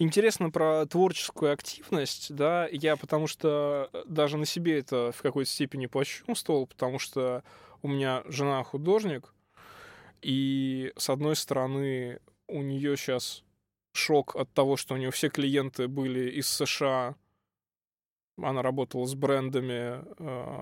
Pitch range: 130-160 Hz